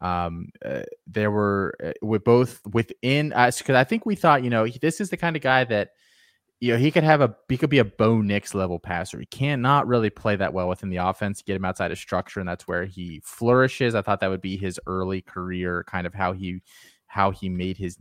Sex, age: male, 20-39